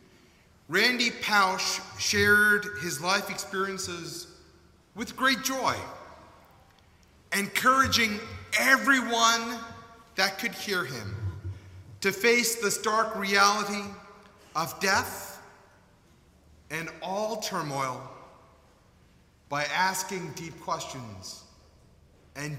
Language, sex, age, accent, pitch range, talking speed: English, male, 30-49, American, 140-225 Hz, 80 wpm